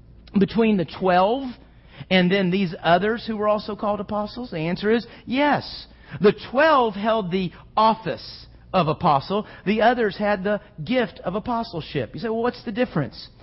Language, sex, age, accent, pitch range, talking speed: English, male, 50-69, American, 180-235 Hz, 160 wpm